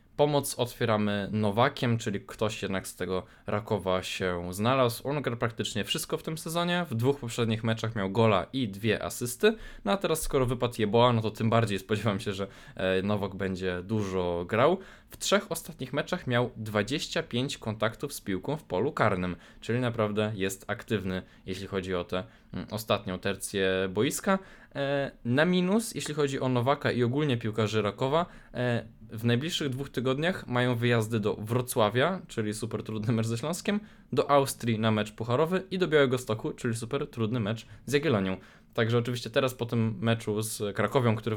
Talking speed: 165 wpm